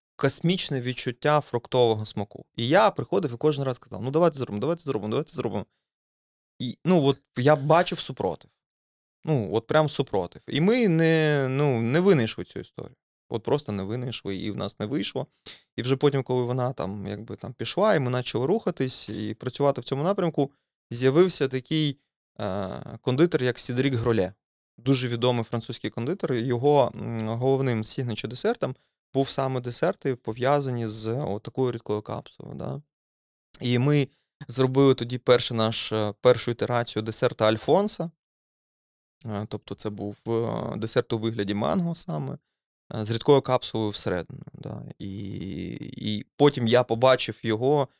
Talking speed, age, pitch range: 145 wpm, 20-39, 110-145 Hz